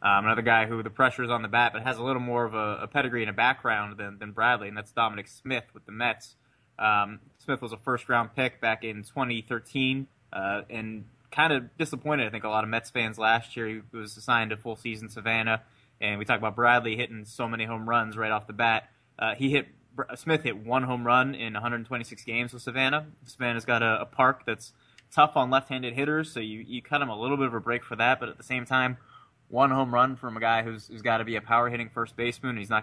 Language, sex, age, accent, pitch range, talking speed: English, male, 20-39, American, 110-130 Hz, 245 wpm